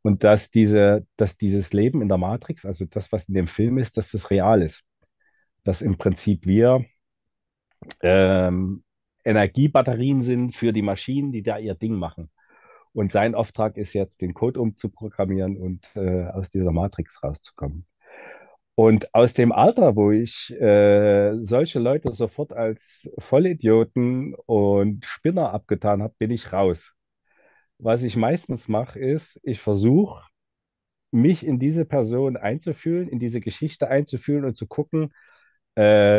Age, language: 40-59, German